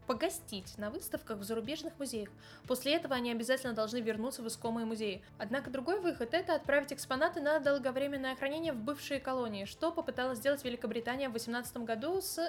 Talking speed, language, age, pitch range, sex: 170 wpm, Russian, 10-29, 230-300 Hz, female